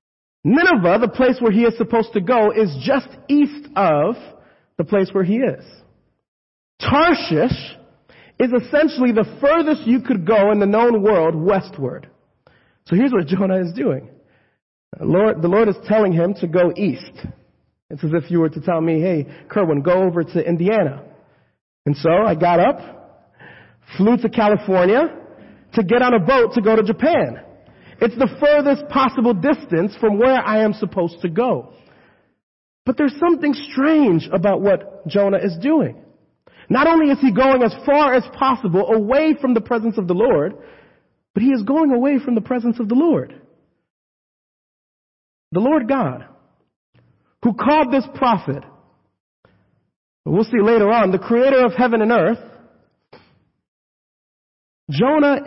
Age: 40-59